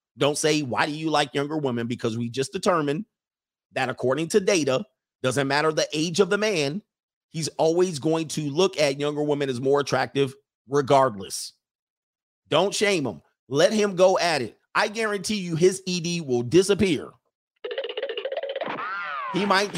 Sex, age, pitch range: male, 30-49, 135-180 Hz